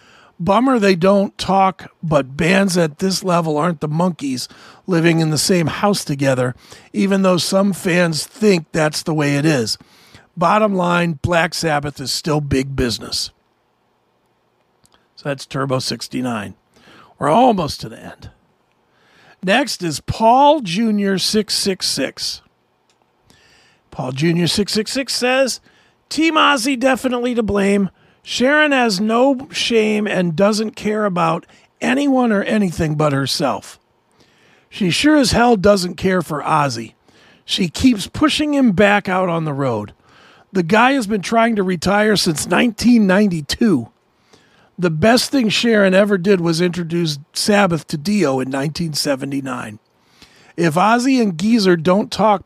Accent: American